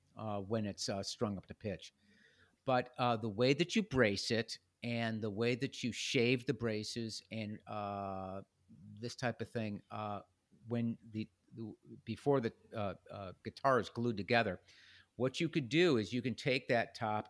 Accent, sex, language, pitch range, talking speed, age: American, male, English, 105-125 Hz, 180 wpm, 50-69